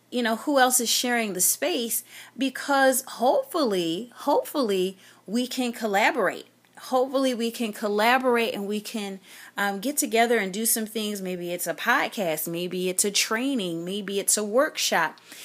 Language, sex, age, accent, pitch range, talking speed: English, female, 30-49, American, 195-245 Hz, 155 wpm